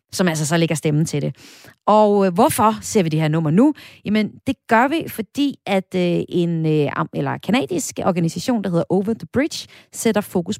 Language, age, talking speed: Danish, 30-49, 200 wpm